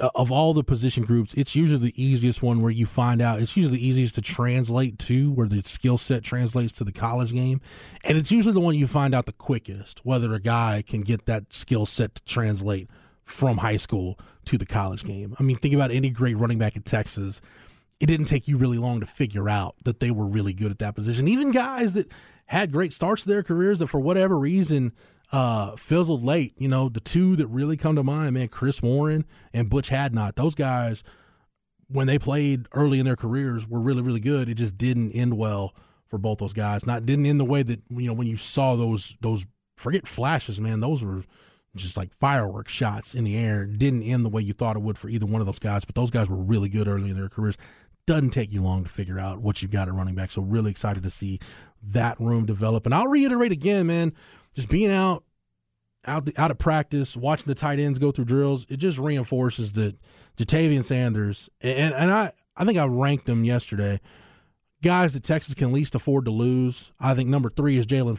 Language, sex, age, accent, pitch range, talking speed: English, male, 20-39, American, 110-140 Hz, 225 wpm